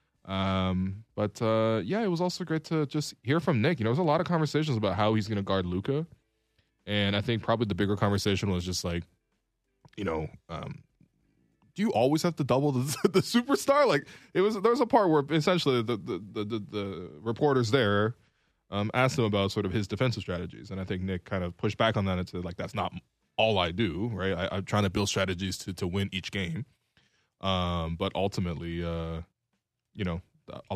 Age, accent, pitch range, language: 20-39, American, 95-120 Hz, English